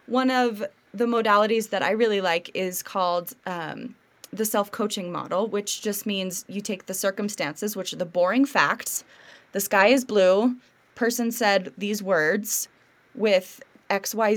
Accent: American